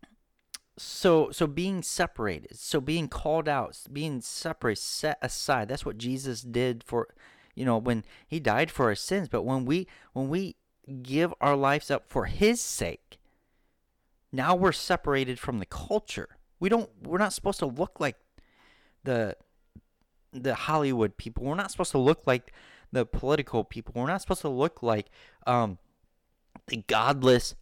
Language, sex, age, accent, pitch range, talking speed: English, male, 30-49, American, 115-170 Hz, 155 wpm